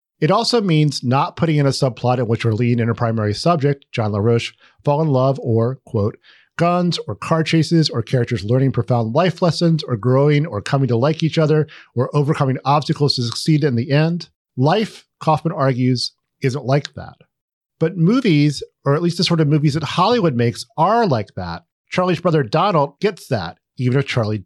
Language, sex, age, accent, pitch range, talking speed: English, male, 40-59, American, 125-165 Hz, 190 wpm